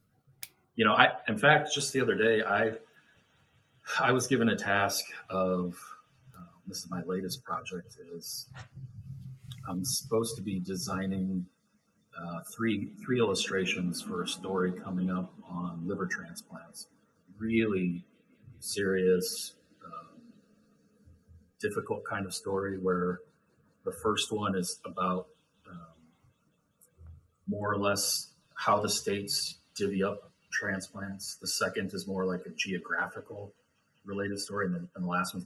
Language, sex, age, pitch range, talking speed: English, male, 40-59, 90-115 Hz, 130 wpm